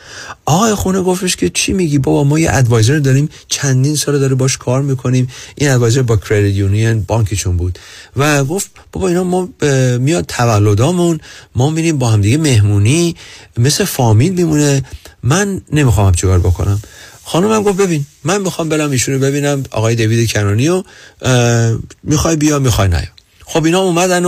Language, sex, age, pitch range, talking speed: Persian, male, 40-59, 100-140 Hz, 155 wpm